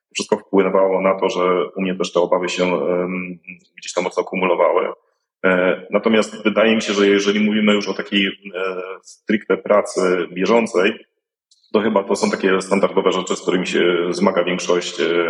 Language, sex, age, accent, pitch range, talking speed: Polish, male, 40-59, native, 90-105 Hz, 155 wpm